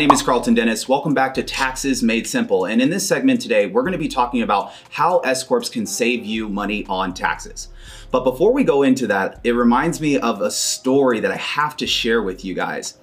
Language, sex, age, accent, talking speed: English, male, 30-49, American, 230 wpm